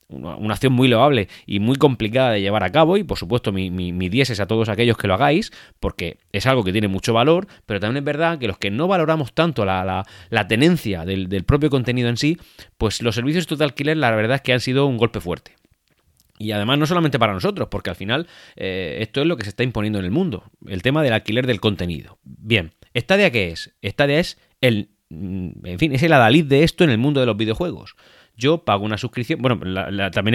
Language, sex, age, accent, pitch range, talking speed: Spanish, male, 30-49, Spanish, 100-145 Hz, 235 wpm